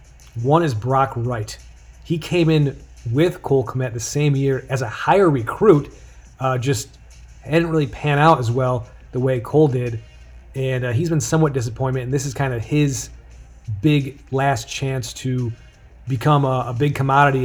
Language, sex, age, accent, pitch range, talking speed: English, male, 30-49, American, 120-150 Hz, 170 wpm